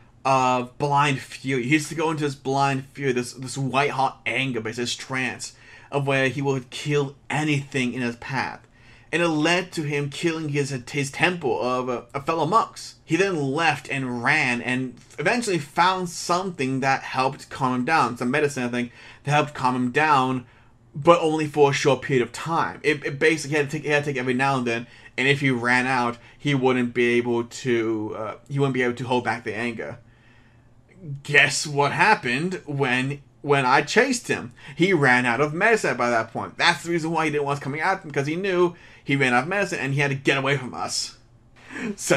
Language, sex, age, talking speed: English, male, 30-49, 215 wpm